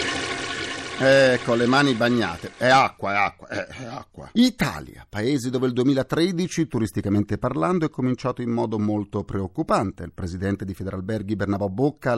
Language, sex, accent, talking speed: Italian, male, native, 155 wpm